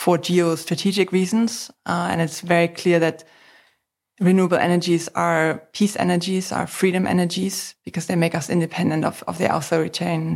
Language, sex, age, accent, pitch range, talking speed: English, female, 20-39, German, 165-185 Hz, 150 wpm